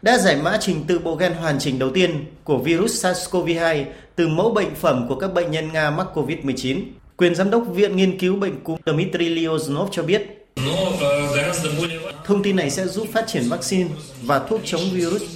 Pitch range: 150-190 Hz